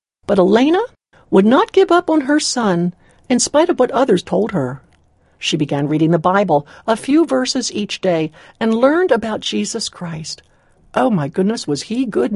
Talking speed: 180 wpm